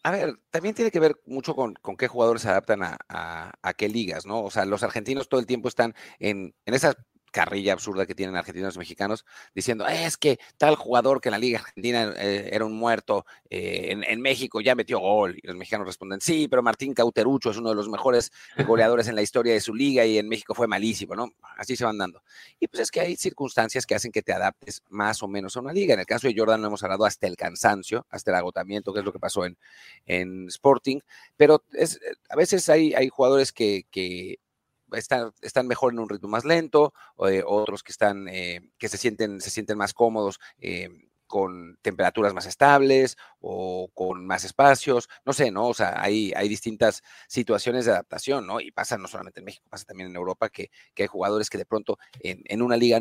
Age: 40-59